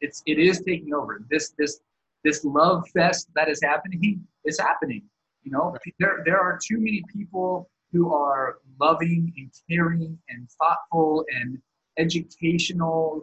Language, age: English, 20-39